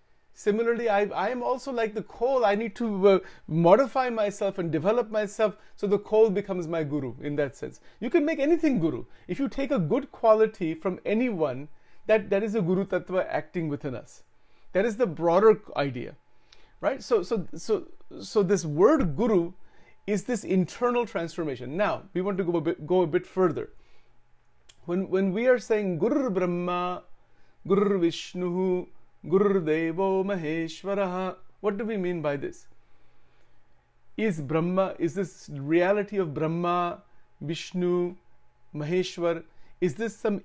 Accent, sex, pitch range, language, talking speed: Indian, male, 165-205 Hz, English, 155 wpm